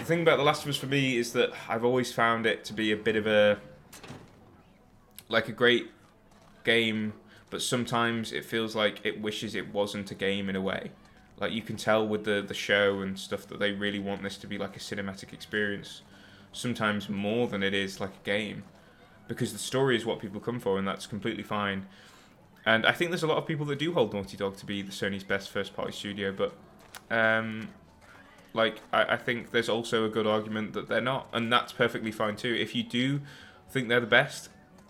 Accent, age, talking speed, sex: British, 20-39, 220 wpm, male